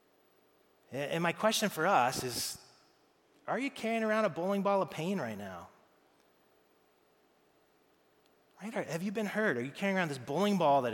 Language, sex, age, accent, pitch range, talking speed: English, male, 30-49, American, 125-185 Hz, 170 wpm